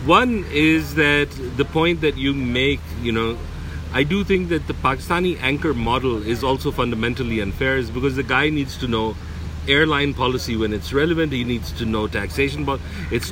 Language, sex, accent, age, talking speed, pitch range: English, male, Indian, 40-59, 185 wpm, 110-170 Hz